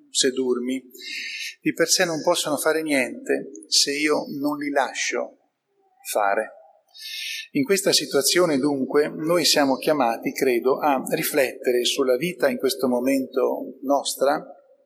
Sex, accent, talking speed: male, native, 125 wpm